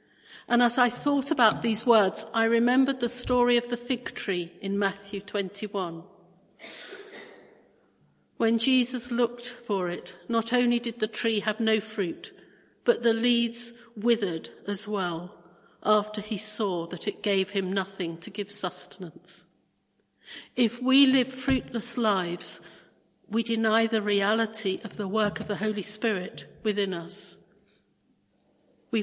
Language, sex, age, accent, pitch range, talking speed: English, female, 50-69, British, 195-235 Hz, 140 wpm